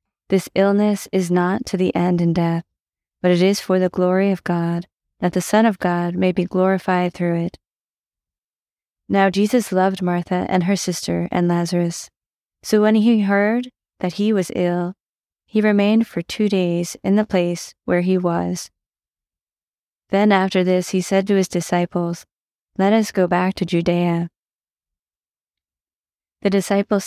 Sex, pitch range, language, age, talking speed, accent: female, 175-200 Hz, English, 20-39, 155 wpm, American